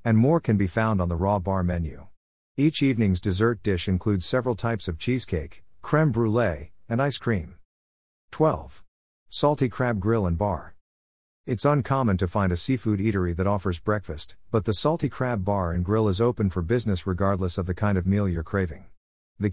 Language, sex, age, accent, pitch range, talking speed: English, male, 50-69, American, 90-115 Hz, 185 wpm